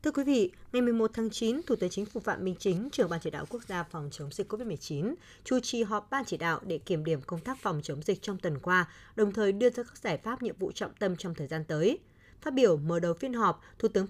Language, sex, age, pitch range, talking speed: Vietnamese, female, 20-39, 180-240 Hz, 275 wpm